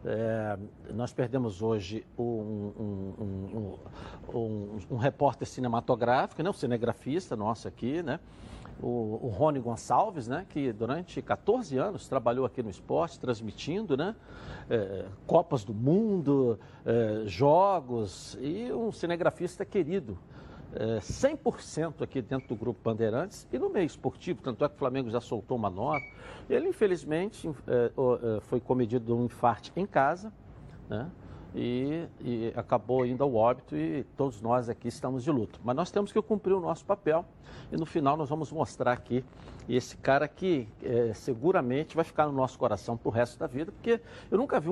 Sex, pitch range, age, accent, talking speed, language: male, 115-160 Hz, 60-79, Brazilian, 150 wpm, Portuguese